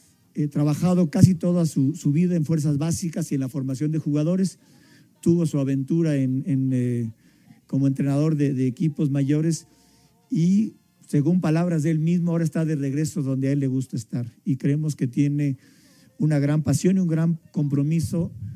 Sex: male